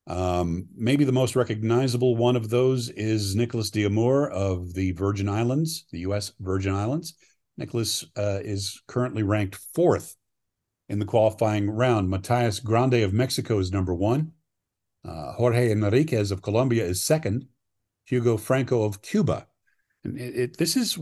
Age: 50-69